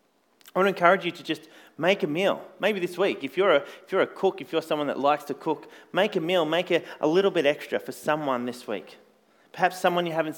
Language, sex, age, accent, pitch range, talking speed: English, male, 30-49, Australian, 130-170 Hz, 255 wpm